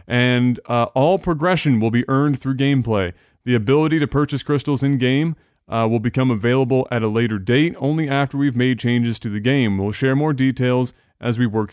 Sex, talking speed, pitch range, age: male, 195 wpm, 120-150 Hz, 30-49